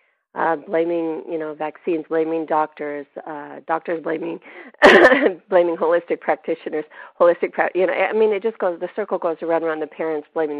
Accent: American